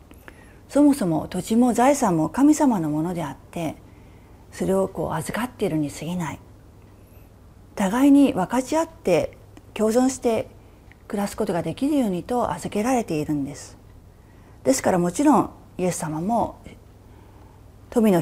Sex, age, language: female, 40-59, Japanese